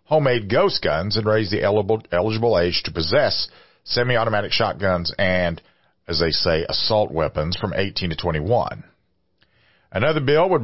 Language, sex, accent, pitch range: English, male, American, 90-130 Hz